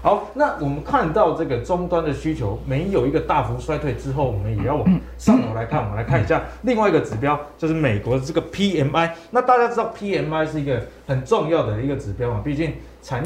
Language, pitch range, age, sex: Chinese, 130-180 Hz, 30-49, male